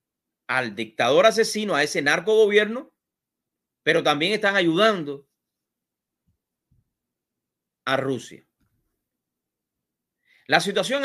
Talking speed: 75 wpm